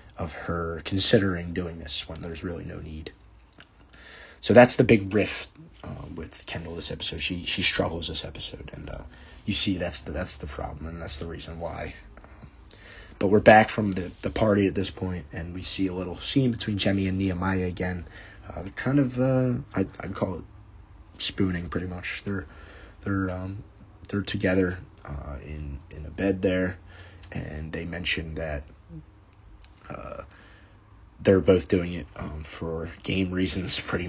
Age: 30-49